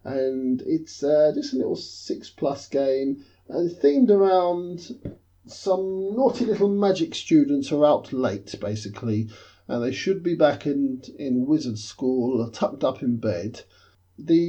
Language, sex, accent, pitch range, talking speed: English, male, British, 105-150 Hz, 155 wpm